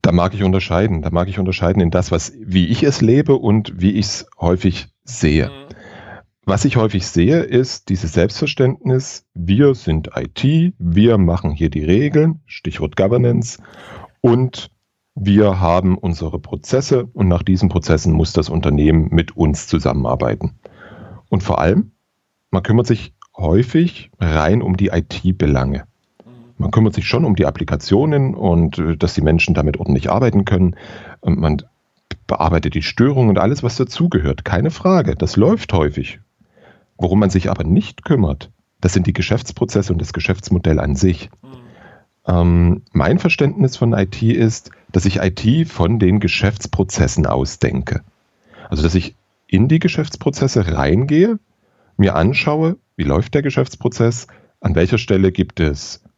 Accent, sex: German, male